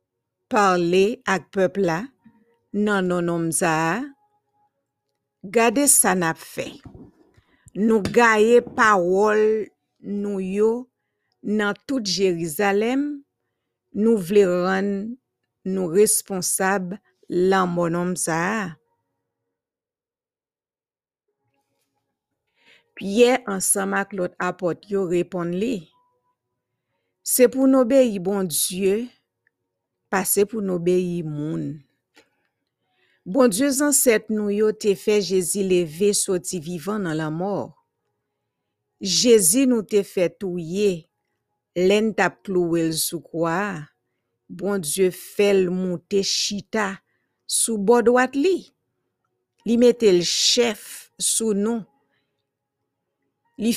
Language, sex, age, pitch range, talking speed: English, female, 50-69, 175-225 Hz, 95 wpm